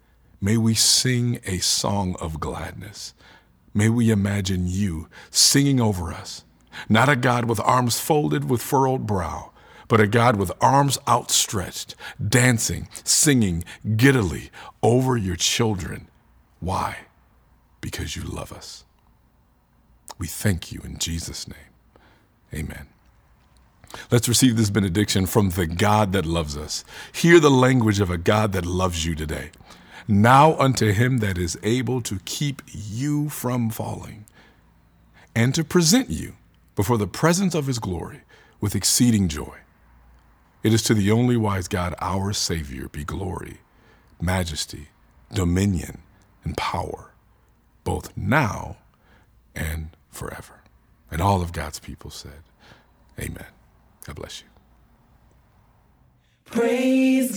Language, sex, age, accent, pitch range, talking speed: English, male, 50-69, American, 90-130 Hz, 125 wpm